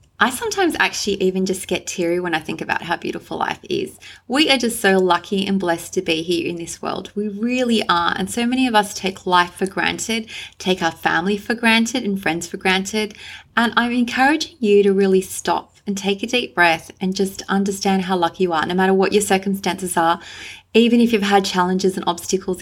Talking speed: 215 wpm